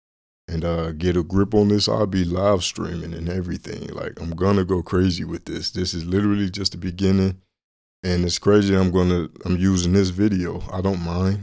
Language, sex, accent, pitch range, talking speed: English, male, American, 85-95 Hz, 200 wpm